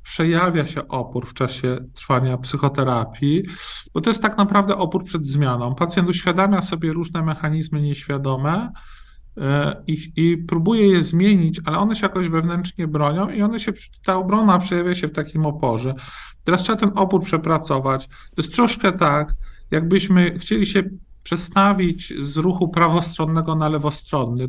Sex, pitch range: male, 140-185 Hz